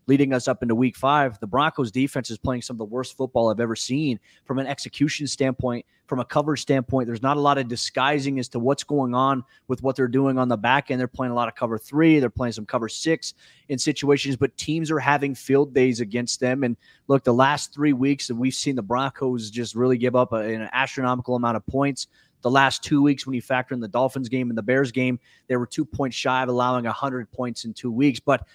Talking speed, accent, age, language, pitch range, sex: 245 wpm, American, 30-49, English, 125-140 Hz, male